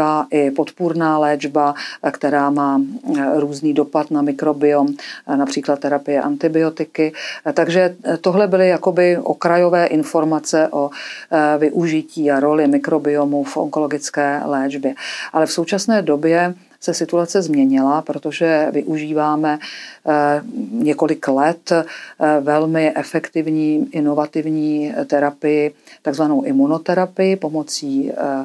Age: 50-69